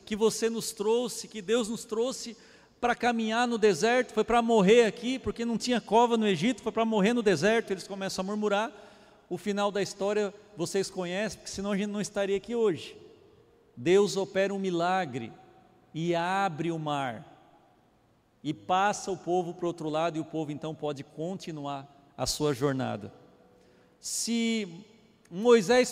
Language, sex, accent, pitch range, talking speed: Portuguese, male, Brazilian, 170-220 Hz, 165 wpm